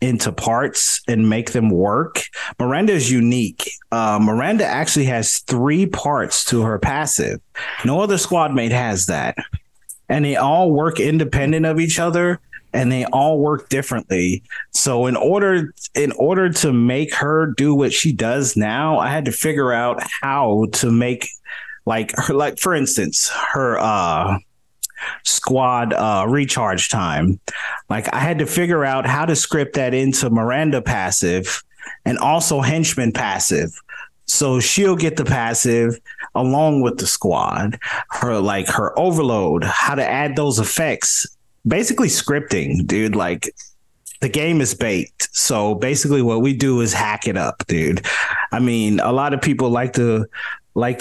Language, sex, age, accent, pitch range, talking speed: English, male, 30-49, American, 115-150 Hz, 155 wpm